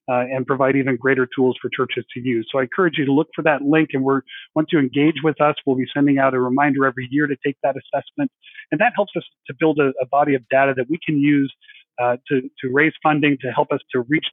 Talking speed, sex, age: 265 wpm, male, 40-59